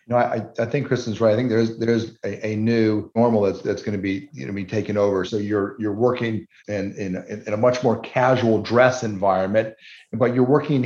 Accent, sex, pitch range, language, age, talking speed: American, male, 105-125 Hz, English, 50-69, 245 wpm